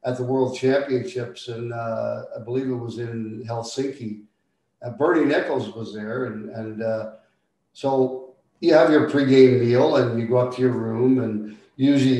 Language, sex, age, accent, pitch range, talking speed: English, male, 50-69, American, 120-145 Hz, 170 wpm